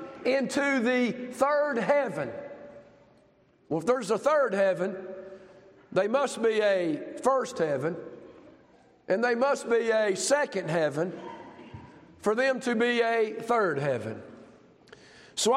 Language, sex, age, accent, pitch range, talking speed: English, male, 50-69, American, 210-250 Hz, 120 wpm